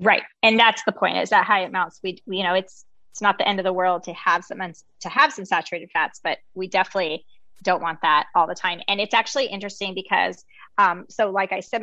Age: 20-39